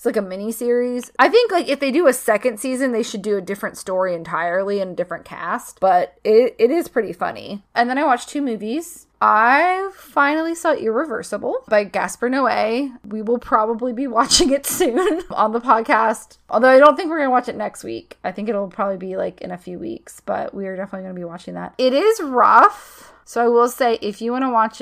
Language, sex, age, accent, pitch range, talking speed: English, female, 20-39, American, 190-250 Hz, 230 wpm